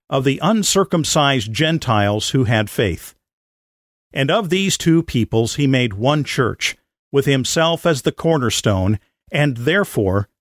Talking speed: 135 wpm